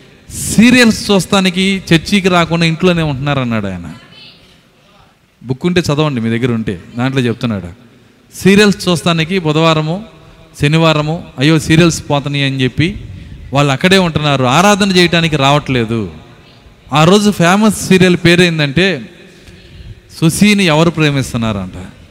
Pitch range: 120-185 Hz